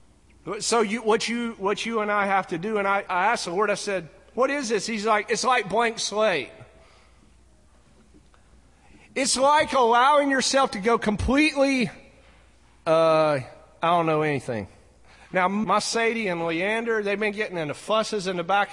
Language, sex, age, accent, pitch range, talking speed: English, male, 40-59, American, 155-225 Hz, 170 wpm